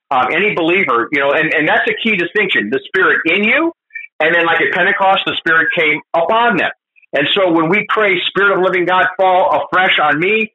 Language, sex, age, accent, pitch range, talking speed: English, male, 50-69, American, 170-225 Hz, 220 wpm